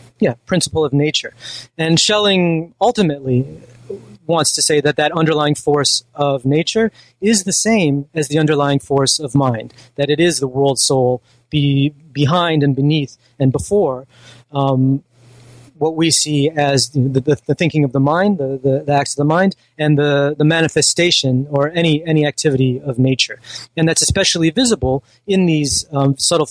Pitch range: 130-160 Hz